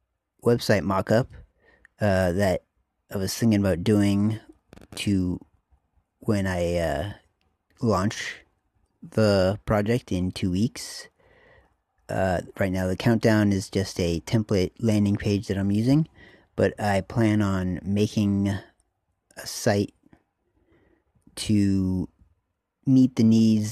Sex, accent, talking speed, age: male, American, 110 wpm, 30-49